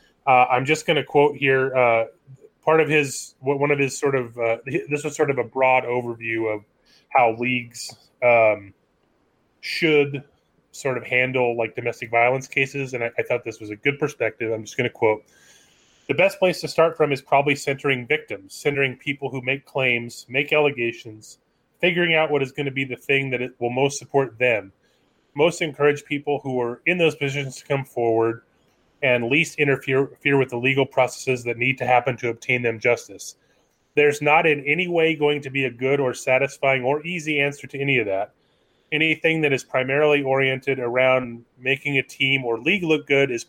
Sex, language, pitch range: male, English, 120-145 Hz